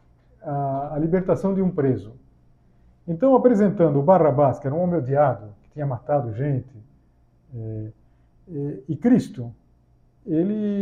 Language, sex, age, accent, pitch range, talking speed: Portuguese, male, 60-79, Brazilian, 120-170 Hz, 135 wpm